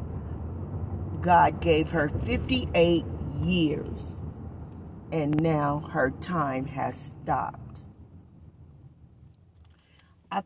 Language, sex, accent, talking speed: English, female, American, 70 wpm